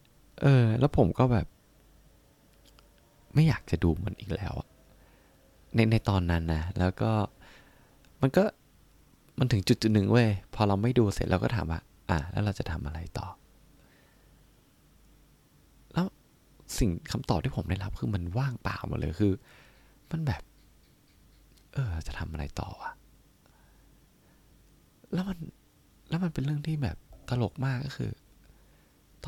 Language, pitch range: Thai, 90-130 Hz